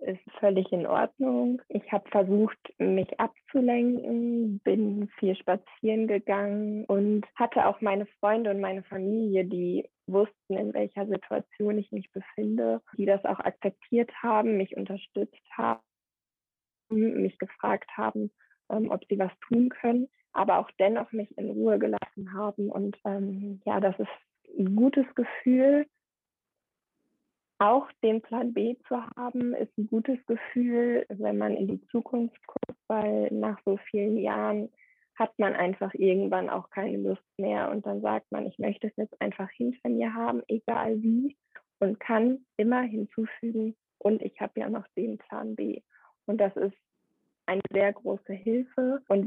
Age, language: 20-39, German